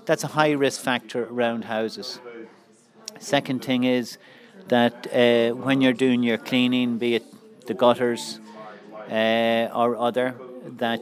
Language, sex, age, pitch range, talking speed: English, male, 40-59, 110-125 Hz, 135 wpm